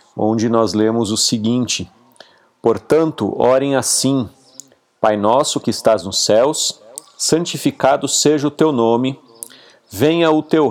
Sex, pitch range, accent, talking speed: male, 115-150 Hz, Brazilian, 125 wpm